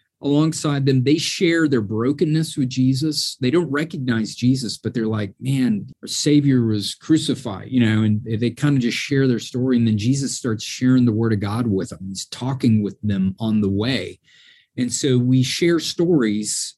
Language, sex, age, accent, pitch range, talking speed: English, male, 40-59, American, 120-160 Hz, 190 wpm